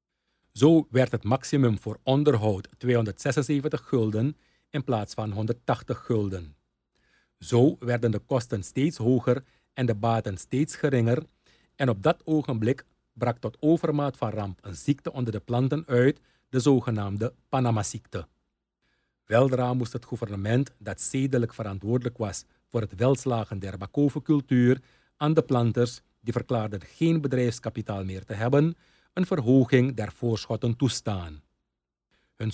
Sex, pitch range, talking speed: male, 110-140 Hz, 130 wpm